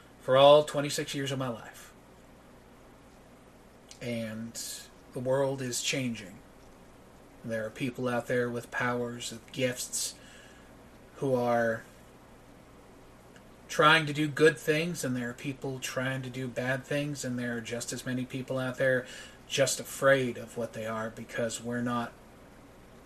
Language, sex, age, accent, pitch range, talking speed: English, male, 40-59, American, 120-140 Hz, 145 wpm